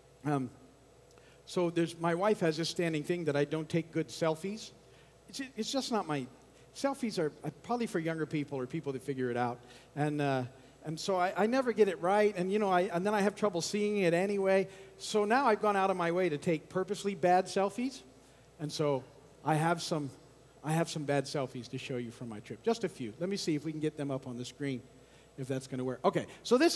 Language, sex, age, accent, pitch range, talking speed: English, male, 50-69, American, 145-200 Hz, 235 wpm